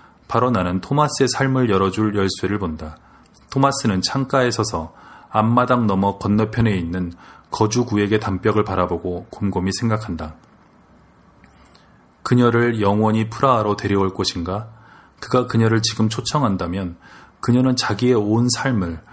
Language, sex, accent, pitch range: Korean, male, native, 95-115 Hz